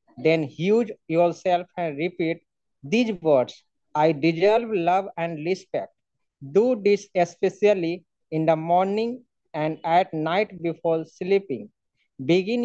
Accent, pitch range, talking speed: Indian, 160-190 Hz, 115 wpm